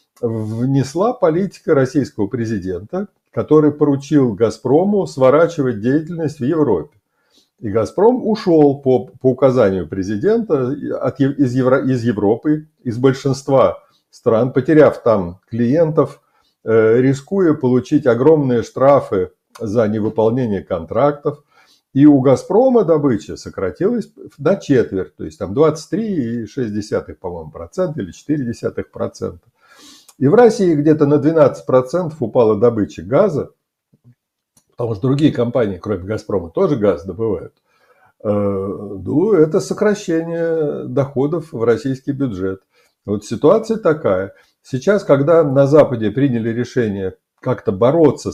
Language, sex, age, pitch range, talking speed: Russian, male, 50-69, 115-155 Hz, 110 wpm